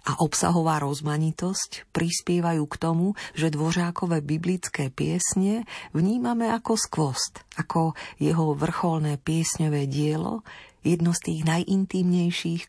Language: Slovak